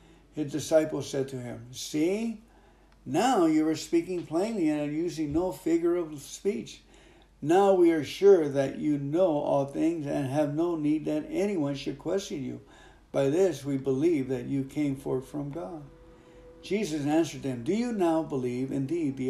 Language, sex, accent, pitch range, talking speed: English, male, American, 135-175 Hz, 170 wpm